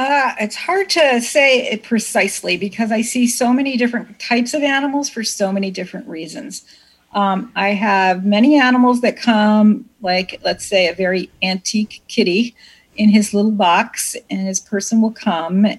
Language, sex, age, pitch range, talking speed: English, female, 40-59, 185-220 Hz, 165 wpm